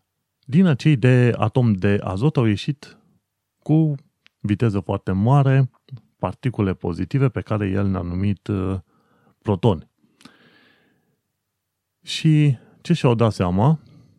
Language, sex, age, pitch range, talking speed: Romanian, male, 30-49, 100-130 Hz, 115 wpm